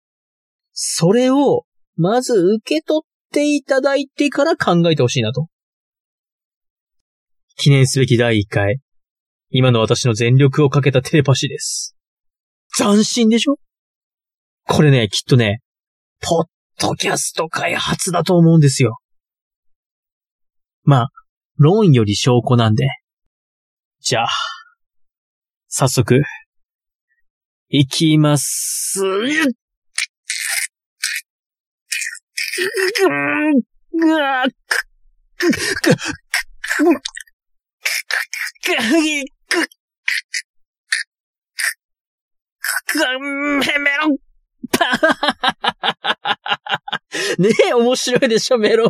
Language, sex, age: Japanese, male, 20-39